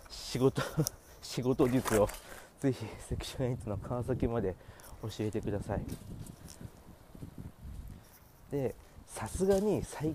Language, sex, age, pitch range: Japanese, male, 40-59, 100-160 Hz